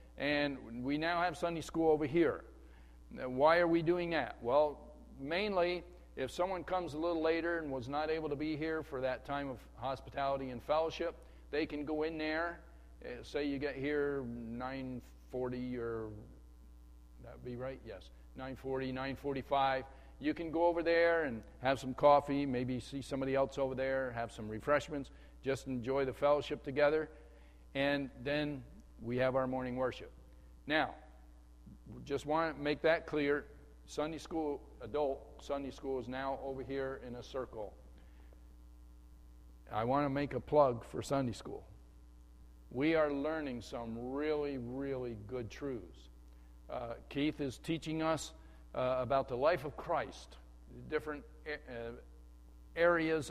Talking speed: 150 wpm